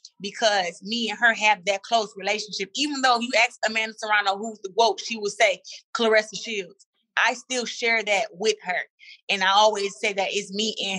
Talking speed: 195 wpm